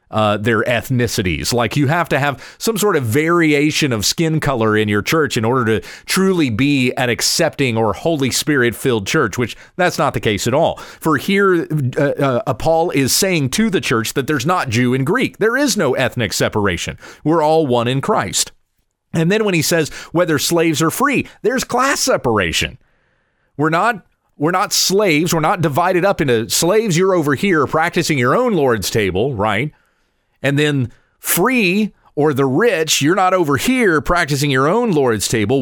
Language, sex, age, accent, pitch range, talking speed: English, male, 30-49, American, 125-170 Hz, 185 wpm